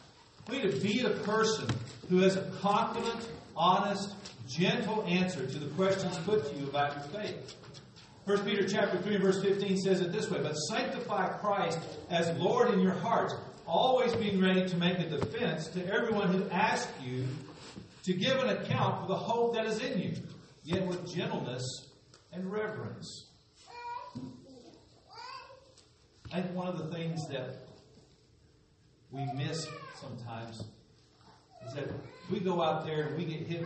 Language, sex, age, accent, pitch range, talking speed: English, male, 50-69, American, 145-200 Hz, 155 wpm